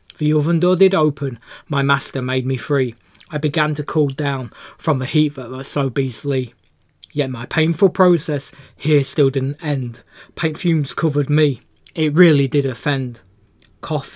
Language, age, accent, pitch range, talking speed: English, 20-39, British, 135-155 Hz, 165 wpm